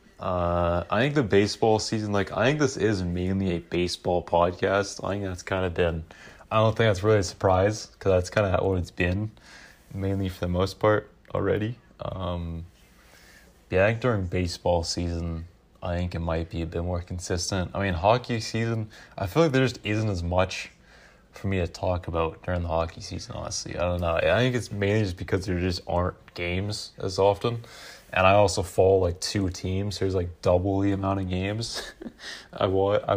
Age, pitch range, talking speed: 20-39, 85-105 Hz, 200 wpm